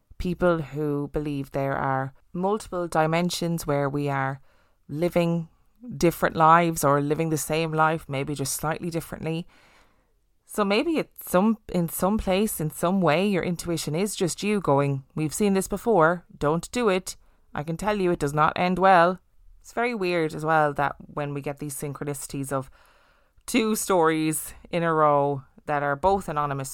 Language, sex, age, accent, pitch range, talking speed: English, female, 20-39, Irish, 145-185 Hz, 170 wpm